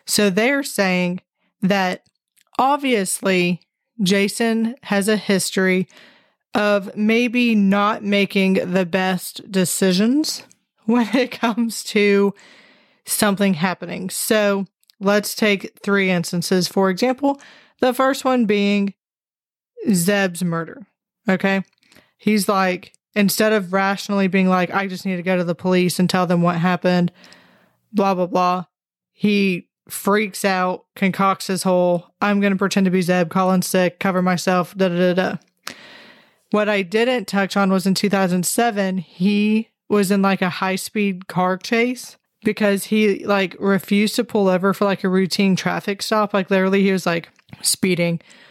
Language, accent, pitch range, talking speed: English, American, 185-210 Hz, 140 wpm